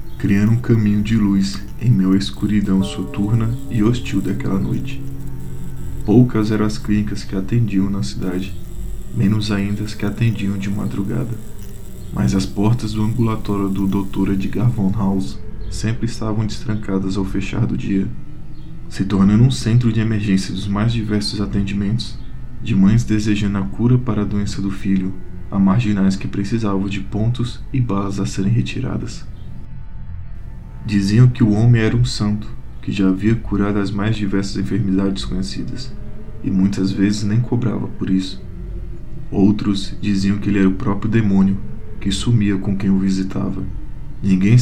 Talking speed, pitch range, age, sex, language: 155 wpm, 95-110 Hz, 20-39, male, Portuguese